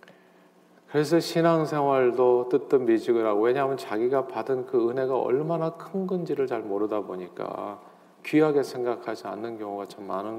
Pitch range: 115-170 Hz